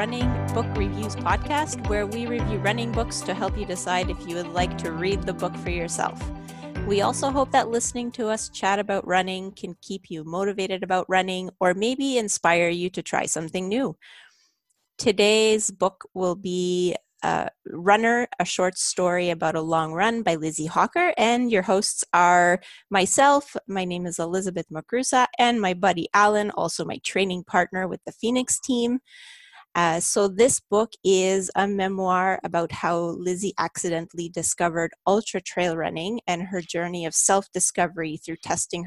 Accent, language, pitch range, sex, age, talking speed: American, English, 175-220 Hz, female, 30-49, 165 wpm